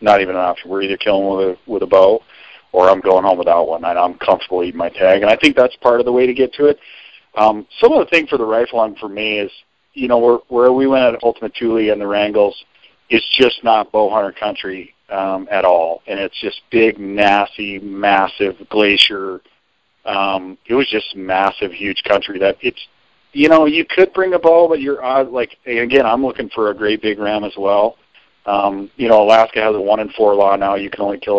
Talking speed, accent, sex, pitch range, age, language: 230 wpm, American, male, 100-120 Hz, 40-59, English